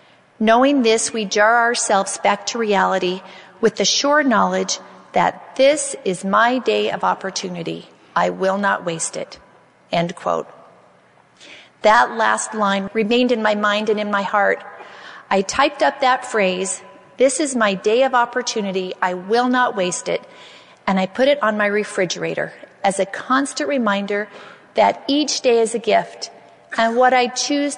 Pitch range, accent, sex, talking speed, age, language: 195-245 Hz, American, female, 160 wpm, 40-59, English